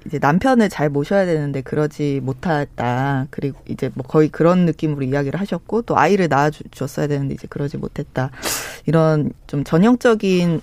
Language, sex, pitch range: Korean, female, 145-180 Hz